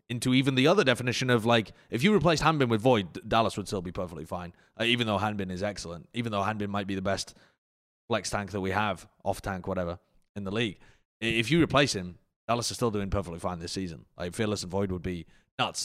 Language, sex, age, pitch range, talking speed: English, male, 20-39, 100-140 Hz, 230 wpm